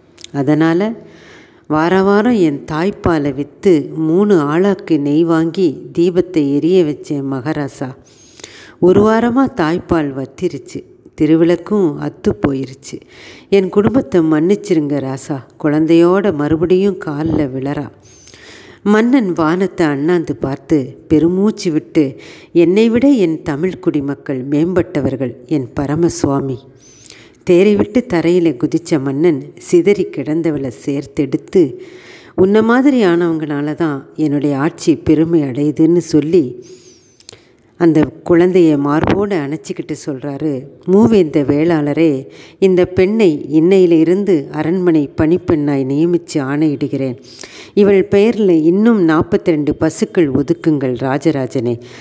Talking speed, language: 95 wpm, Tamil